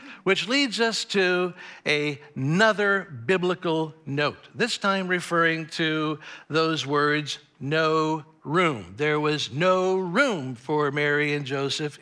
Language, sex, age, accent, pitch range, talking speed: English, male, 60-79, American, 160-240 Hz, 115 wpm